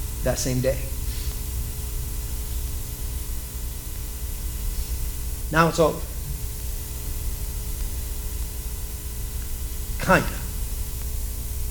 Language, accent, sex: English, American, male